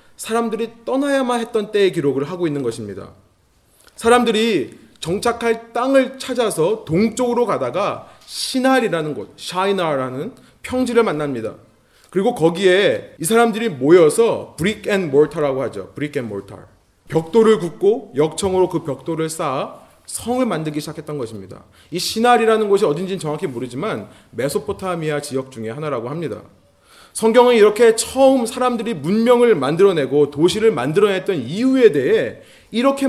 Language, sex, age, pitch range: Korean, male, 30-49, 145-230 Hz